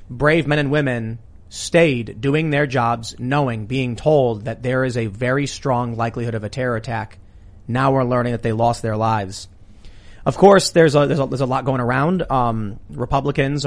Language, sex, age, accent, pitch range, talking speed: English, male, 30-49, American, 115-155 Hz, 190 wpm